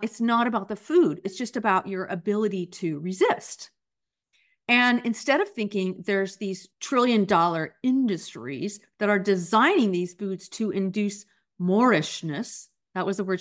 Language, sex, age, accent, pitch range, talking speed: English, female, 40-59, American, 180-225 Hz, 145 wpm